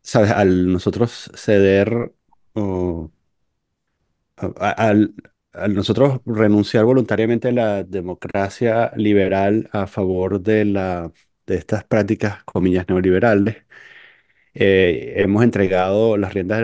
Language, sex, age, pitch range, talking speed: Spanish, male, 30-49, 95-115 Hz, 105 wpm